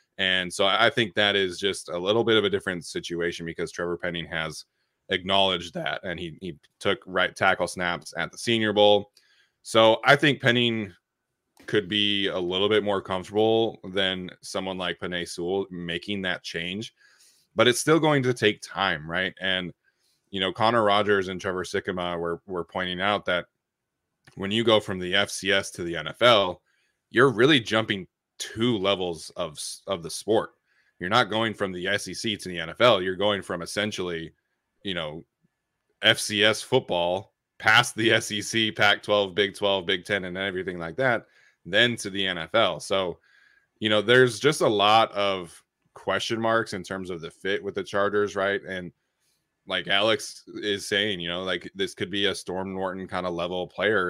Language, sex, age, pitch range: English, male, 20-39, 90-105 Hz